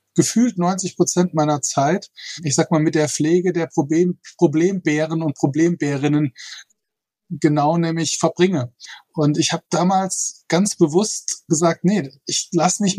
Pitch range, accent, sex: 150-180 Hz, German, male